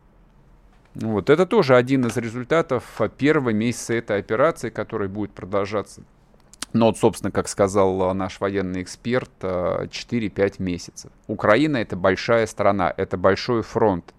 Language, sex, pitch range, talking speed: Russian, male, 95-120 Hz, 125 wpm